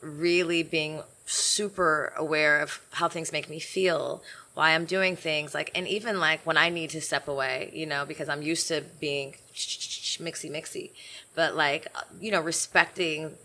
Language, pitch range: English, 155-175 Hz